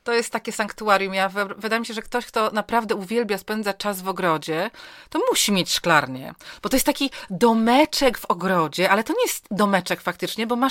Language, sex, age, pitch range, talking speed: Polish, female, 40-59, 185-225 Hz, 200 wpm